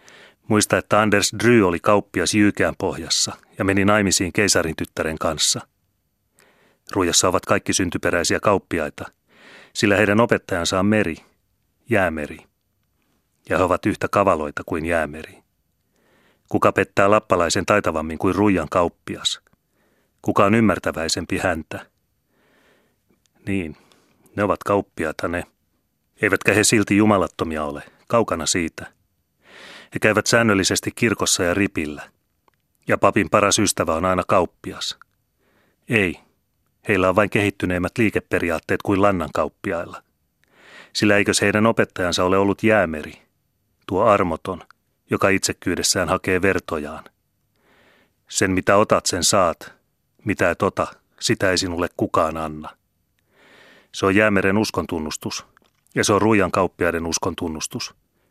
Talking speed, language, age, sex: 115 wpm, Finnish, 30-49, male